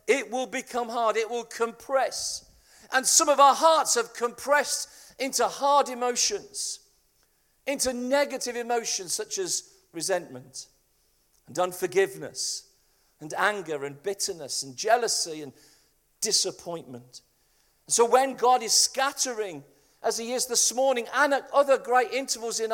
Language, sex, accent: English, male, British